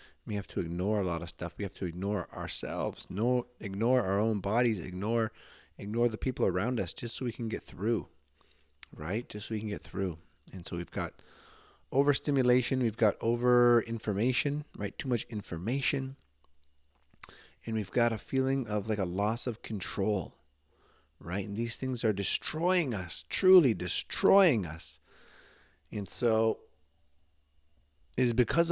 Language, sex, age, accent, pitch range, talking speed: English, male, 30-49, American, 90-115 Hz, 160 wpm